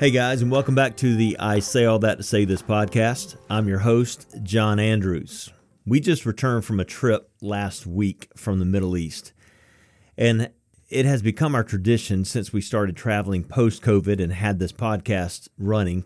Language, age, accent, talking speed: English, 40-59, American, 180 wpm